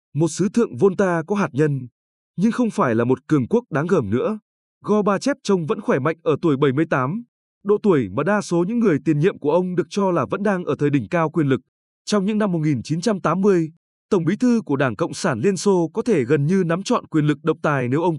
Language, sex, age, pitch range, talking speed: Vietnamese, male, 20-39, 145-205 Hz, 240 wpm